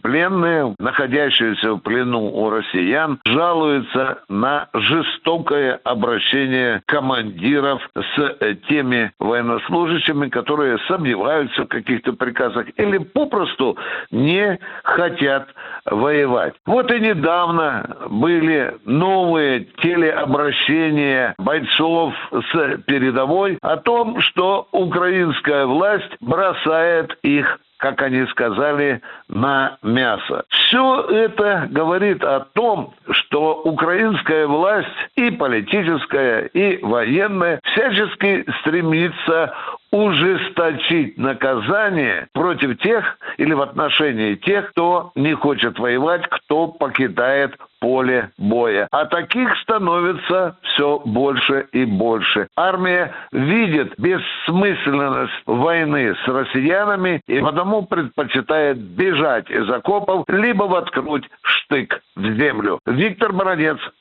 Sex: male